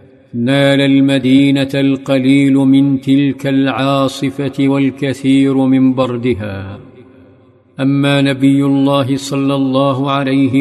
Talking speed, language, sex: 85 wpm, Arabic, male